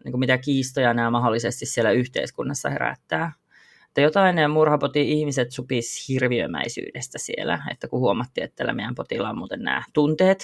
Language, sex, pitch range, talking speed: Finnish, female, 140-175 Hz, 145 wpm